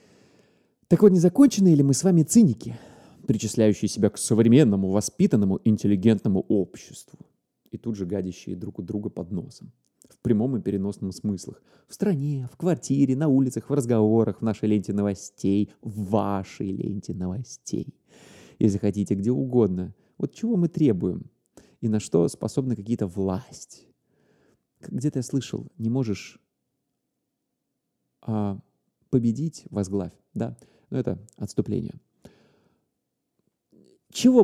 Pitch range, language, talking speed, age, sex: 100-140 Hz, Russian, 125 wpm, 30-49, male